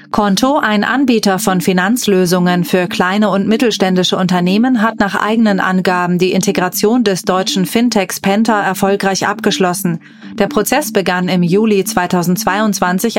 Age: 30-49